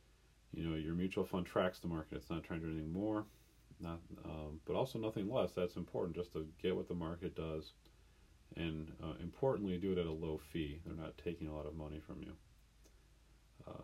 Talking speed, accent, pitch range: 210 wpm, American, 75-90 Hz